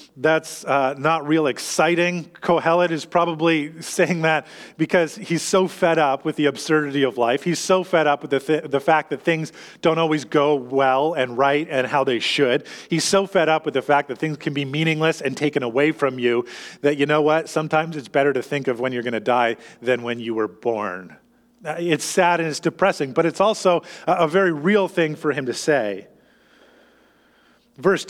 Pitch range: 145-185 Hz